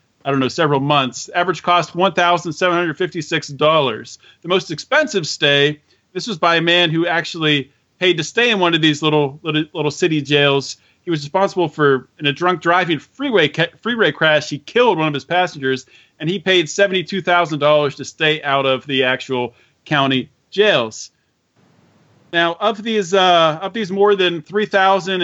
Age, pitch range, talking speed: 30-49, 145-180 Hz, 185 wpm